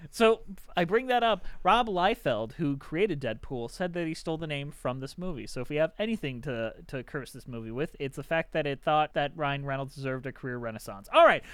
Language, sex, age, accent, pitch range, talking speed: English, male, 30-49, American, 150-215 Hz, 230 wpm